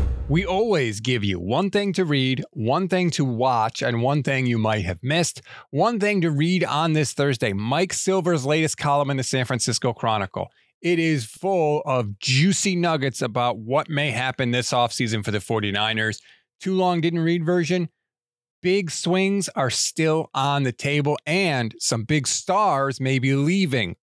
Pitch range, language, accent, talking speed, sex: 120-165 Hz, English, American, 170 wpm, male